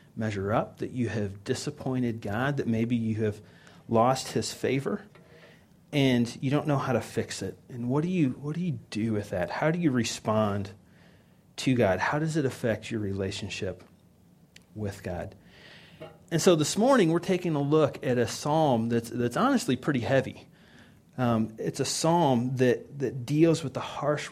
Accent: American